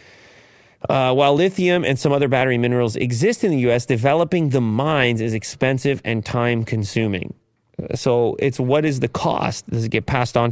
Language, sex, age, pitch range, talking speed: English, male, 30-49, 110-130 Hz, 170 wpm